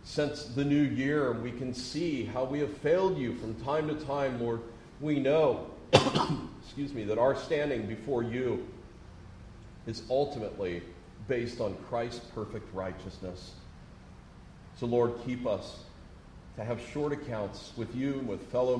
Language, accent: English, American